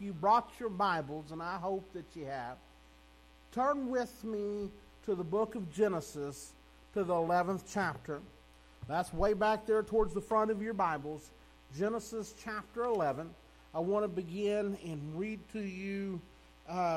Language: English